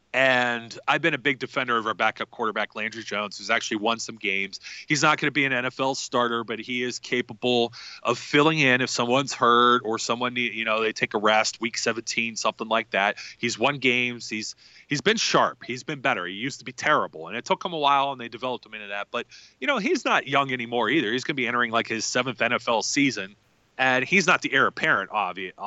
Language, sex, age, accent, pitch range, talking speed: English, male, 30-49, American, 115-145 Hz, 235 wpm